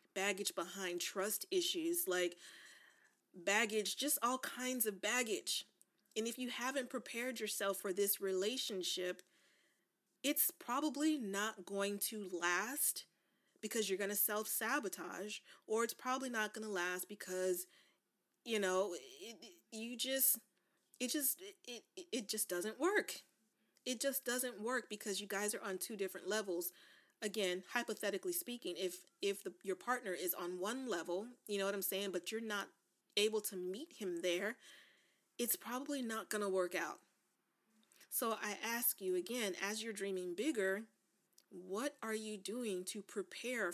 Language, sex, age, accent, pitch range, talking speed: English, female, 30-49, American, 190-255 Hz, 150 wpm